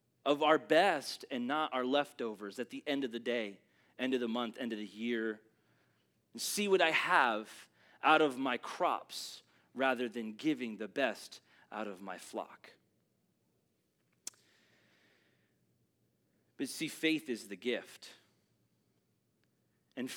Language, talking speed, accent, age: English, 135 wpm, American, 30-49